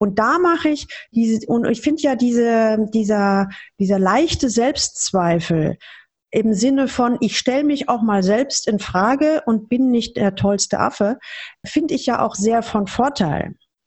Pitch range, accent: 195-260 Hz, German